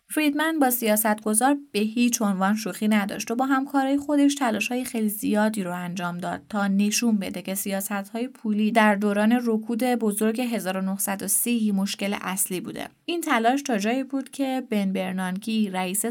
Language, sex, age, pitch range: Persian, female, 20-39, 195-235 Hz